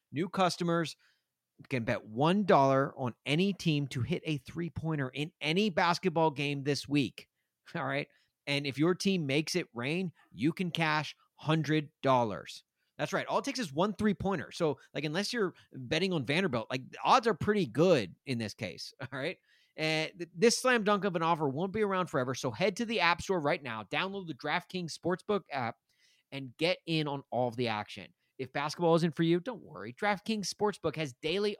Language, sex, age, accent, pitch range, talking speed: English, male, 30-49, American, 135-180 Hz, 195 wpm